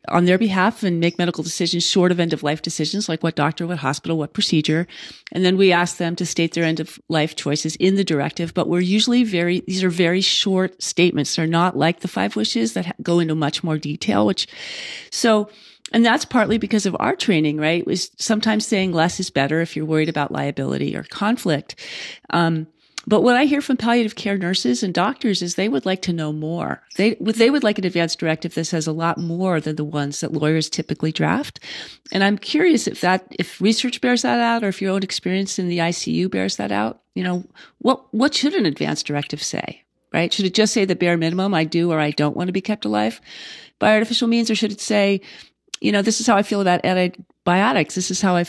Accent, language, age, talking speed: American, English, 40-59, 230 wpm